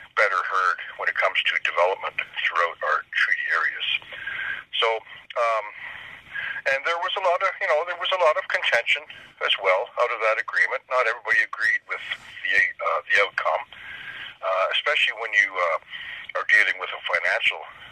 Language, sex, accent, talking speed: English, male, American, 170 wpm